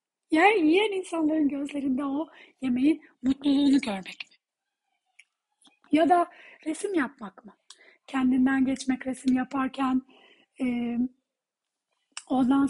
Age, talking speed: 40-59, 95 wpm